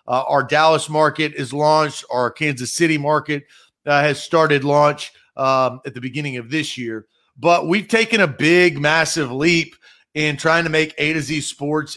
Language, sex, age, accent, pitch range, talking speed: English, male, 40-59, American, 145-180 Hz, 180 wpm